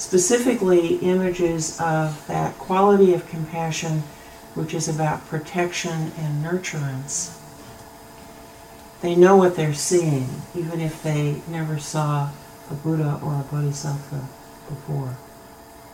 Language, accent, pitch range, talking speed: English, American, 145-170 Hz, 110 wpm